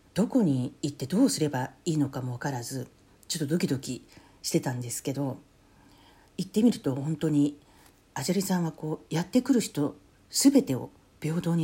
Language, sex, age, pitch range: Japanese, female, 50-69, 140-175 Hz